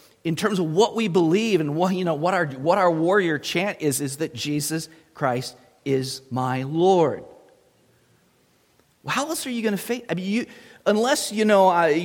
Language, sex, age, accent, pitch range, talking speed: English, male, 40-59, American, 150-200 Hz, 180 wpm